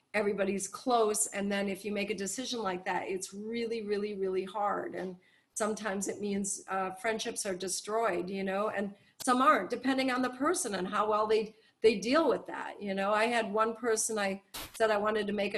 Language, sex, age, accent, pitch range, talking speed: English, female, 40-59, American, 205-275 Hz, 205 wpm